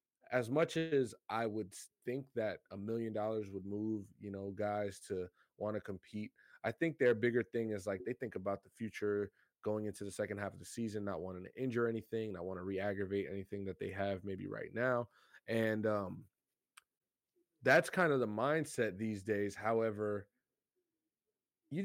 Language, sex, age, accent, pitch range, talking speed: English, male, 20-39, American, 100-130 Hz, 180 wpm